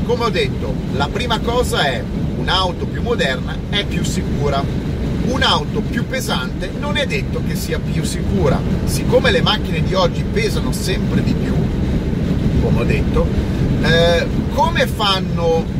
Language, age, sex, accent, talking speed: Italian, 40-59, male, native, 140 wpm